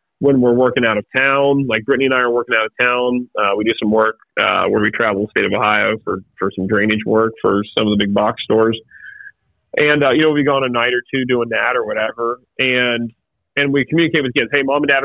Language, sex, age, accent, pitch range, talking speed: English, male, 30-49, American, 110-135 Hz, 260 wpm